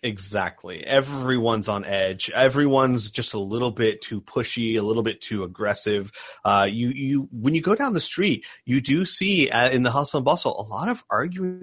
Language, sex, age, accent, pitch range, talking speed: English, male, 30-49, American, 100-140 Hz, 195 wpm